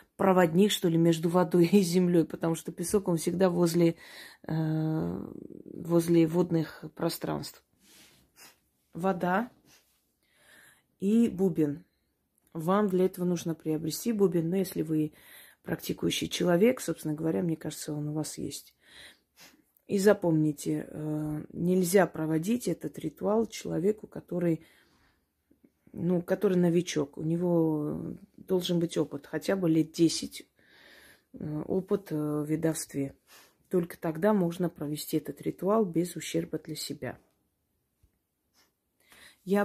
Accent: native